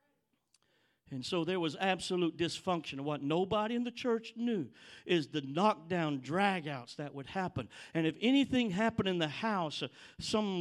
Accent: American